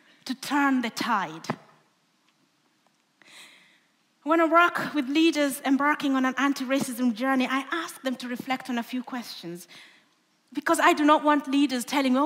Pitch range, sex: 225-300 Hz, female